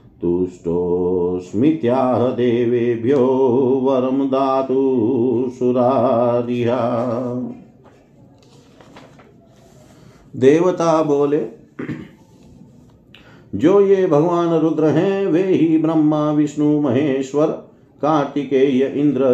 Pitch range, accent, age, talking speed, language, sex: 115-145 Hz, native, 50-69, 60 wpm, Hindi, male